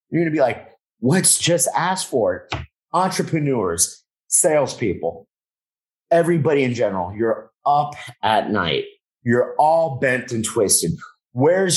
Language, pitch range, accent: English, 110-160 Hz, American